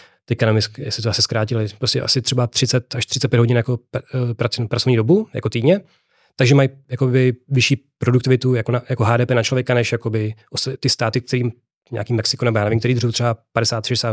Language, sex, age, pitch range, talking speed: Czech, male, 30-49, 115-130 Hz, 180 wpm